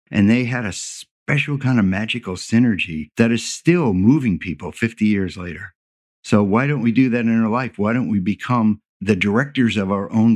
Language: English